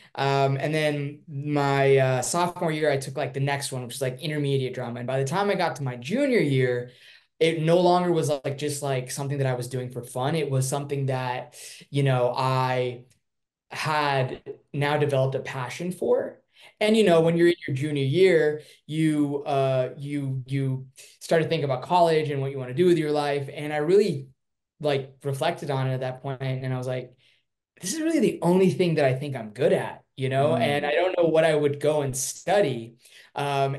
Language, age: English, 20-39